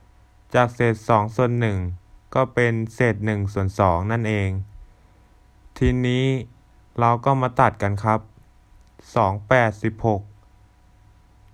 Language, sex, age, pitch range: Thai, male, 20-39, 100-125 Hz